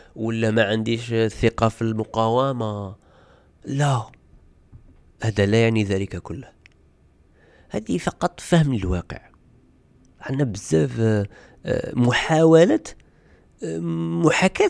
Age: 40-59